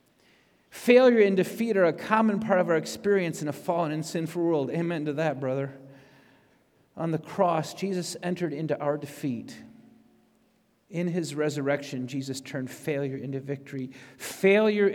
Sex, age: male, 50-69